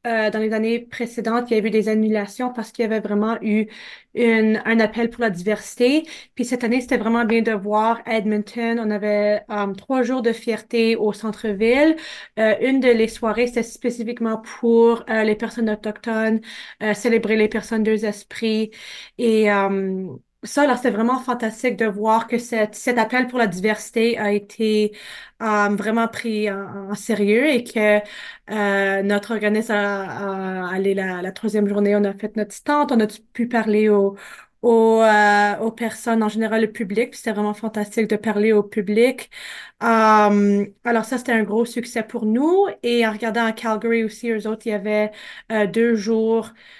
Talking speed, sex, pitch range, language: 185 wpm, female, 210-230 Hz, French